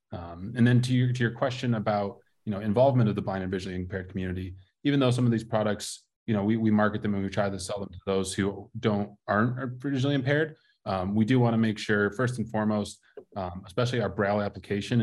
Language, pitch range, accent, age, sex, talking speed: English, 100-115 Hz, American, 20-39, male, 235 wpm